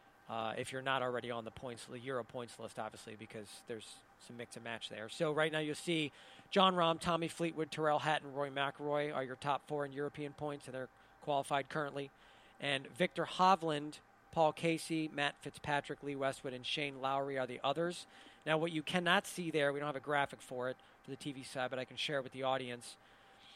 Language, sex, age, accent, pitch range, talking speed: English, male, 40-59, American, 140-175 Hz, 210 wpm